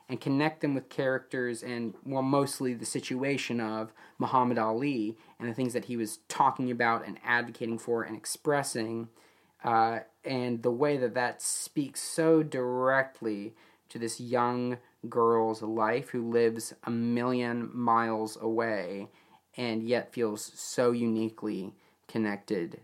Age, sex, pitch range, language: 30-49, male, 115-140 Hz, English